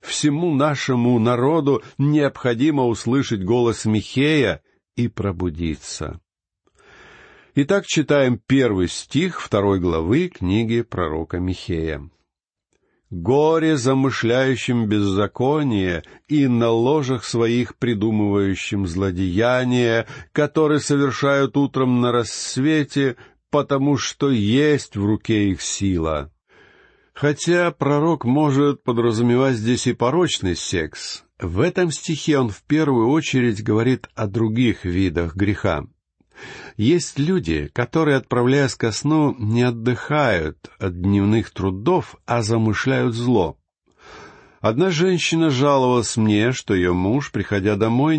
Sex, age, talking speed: male, 50-69, 100 wpm